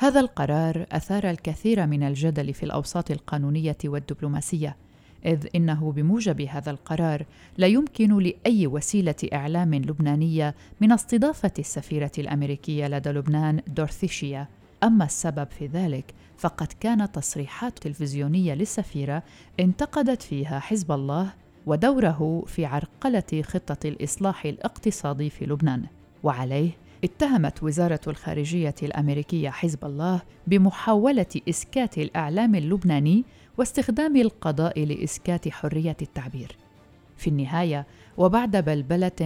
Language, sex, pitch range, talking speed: Arabic, female, 145-180 Hz, 105 wpm